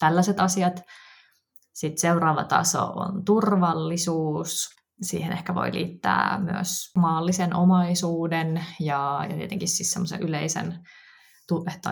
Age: 20-39